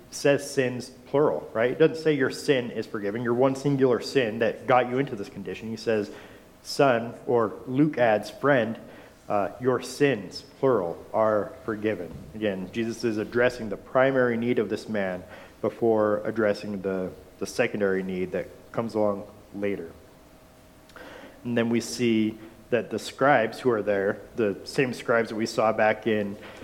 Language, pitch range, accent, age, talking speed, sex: English, 105-125 Hz, American, 40-59, 160 wpm, male